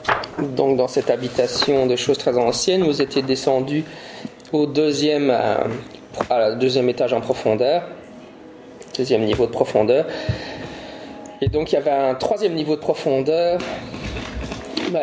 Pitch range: 120-150 Hz